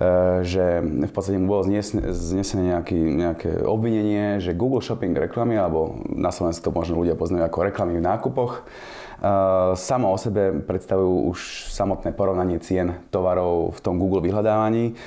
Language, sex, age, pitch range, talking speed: Slovak, male, 30-49, 90-105 Hz, 150 wpm